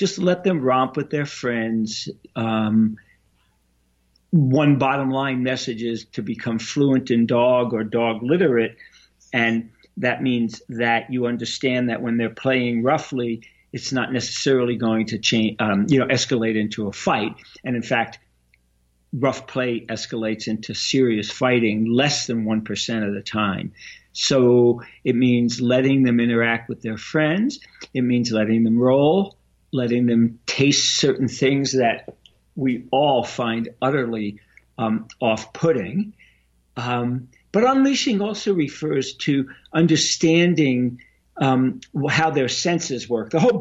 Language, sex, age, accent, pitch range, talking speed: English, male, 50-69, American, 115-135 Hz, 140 wpm